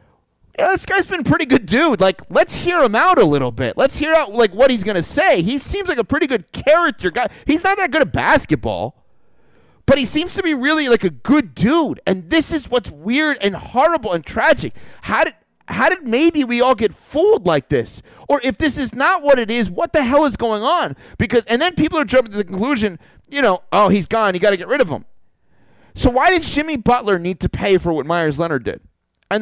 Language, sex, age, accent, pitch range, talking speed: English, male, 30-49, American, 200-300 Hz, 235 wpm